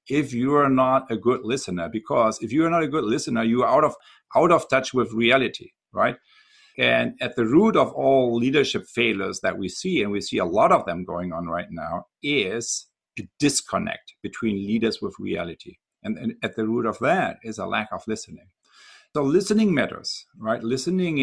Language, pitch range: English, 105-140 Hz